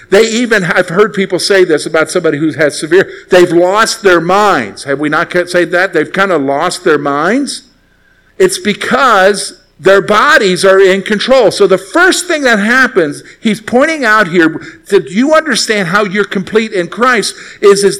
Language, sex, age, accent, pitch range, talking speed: English, male, 50-69, American, 175-240 Hz, 180 wpm